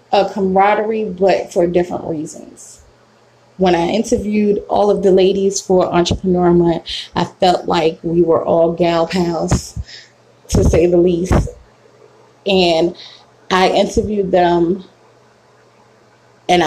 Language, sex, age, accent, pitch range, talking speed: English, female, 20-39, American, 170-190 Hz, 120 wpm